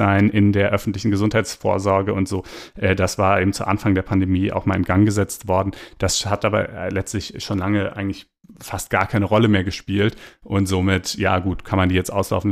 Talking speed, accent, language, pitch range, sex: 195 wpm, German, German, 95-110 Hz, male